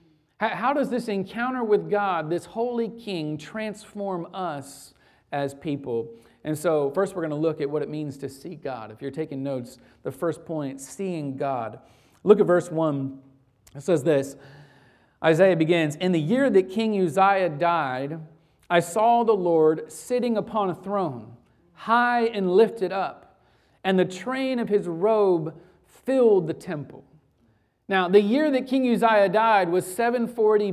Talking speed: 160 wpm